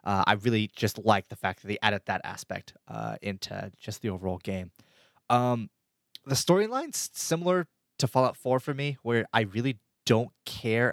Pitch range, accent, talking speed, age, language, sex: 100-115 Hz, American, 175 wpm, 20-39, English, male